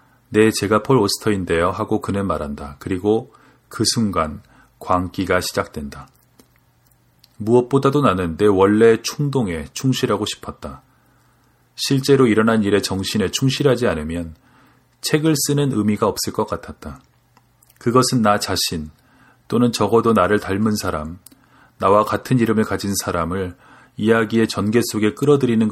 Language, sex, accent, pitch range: Korean, male, native, 95-125 Hz